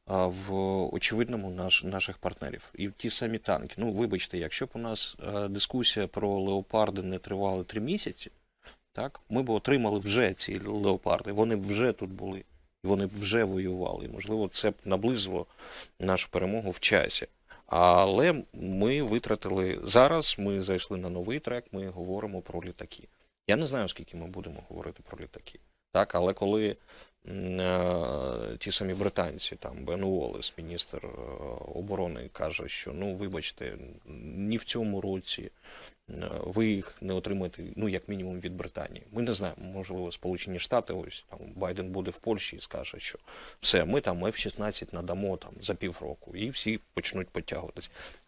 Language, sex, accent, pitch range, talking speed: Ukrainian, male, native, 95-110 Hz, 155 wpm